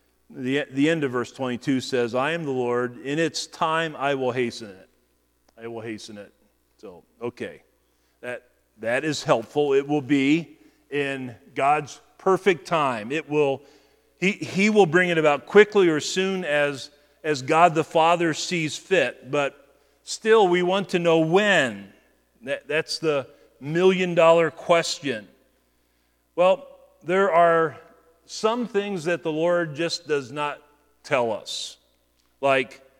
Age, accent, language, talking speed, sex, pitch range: 40-59, American, English, 150 wpm, male, 135-175 Hz